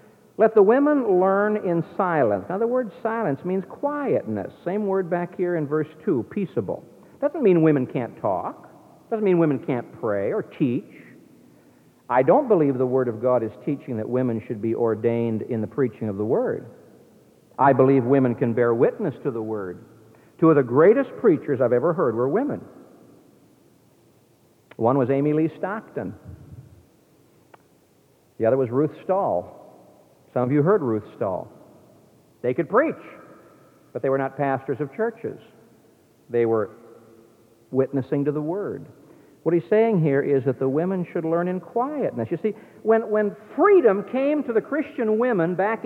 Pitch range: 135-225 Hz